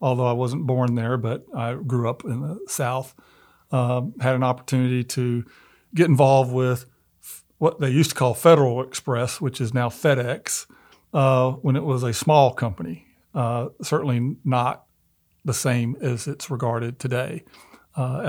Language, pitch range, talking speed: English, 120-140 Hz, 160 wpm